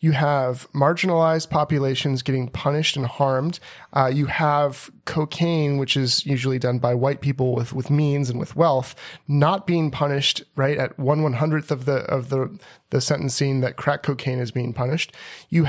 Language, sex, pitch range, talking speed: English, male, 130-155 Hz, 175 wpm